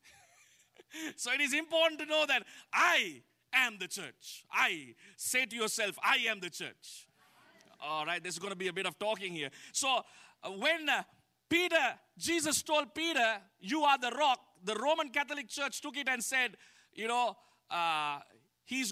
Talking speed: 165 wpm